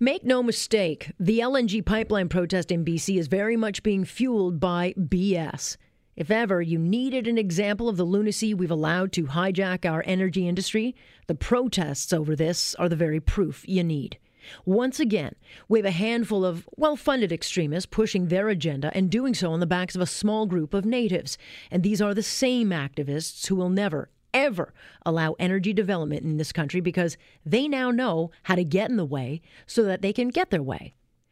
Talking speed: 190 wpm